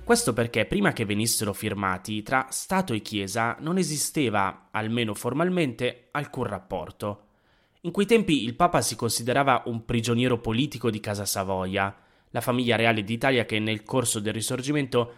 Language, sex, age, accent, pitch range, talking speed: Italian, male, 20-39, native, 105-135 Hz, 150 wpm